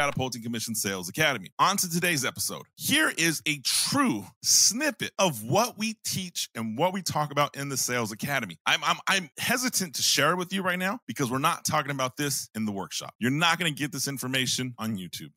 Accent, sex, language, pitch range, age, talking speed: American, male, English, 135-210 Hz, 30-49, 215 wpm